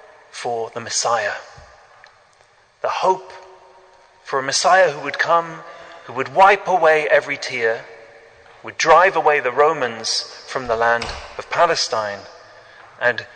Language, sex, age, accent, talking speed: English, male, 30-49, British, 125 wpm